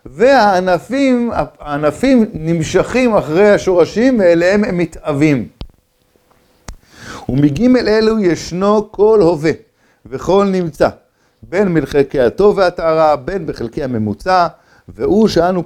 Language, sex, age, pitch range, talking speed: Hebrew, male, 50-69, 135-180 Hz, 90 wpm